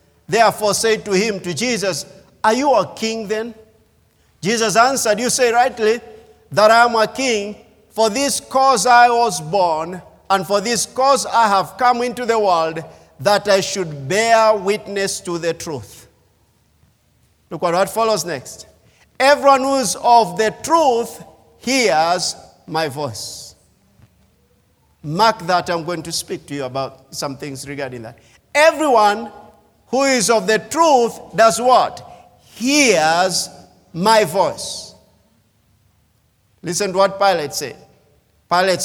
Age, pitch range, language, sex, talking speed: 50-69, 160-235 Hz, English, male, 135 wpm